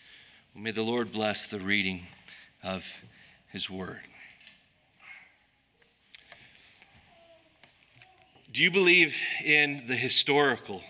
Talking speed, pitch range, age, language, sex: 85 wpm, 140-200 Hz, 40-59, English, male